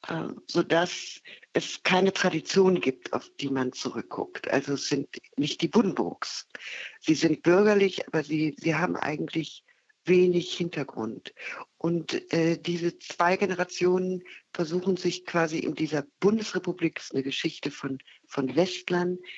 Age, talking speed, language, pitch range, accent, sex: 50-69, 125 wpm, German, 165-195 Hz, German, female